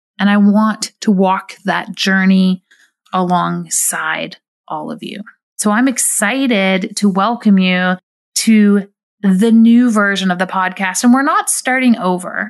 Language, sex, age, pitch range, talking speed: English, female, 30-49, 195-235 Hz, 140 wpm